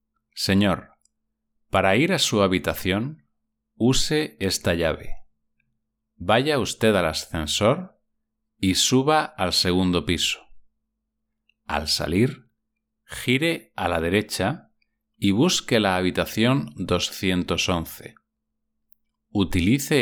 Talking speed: 90 wpm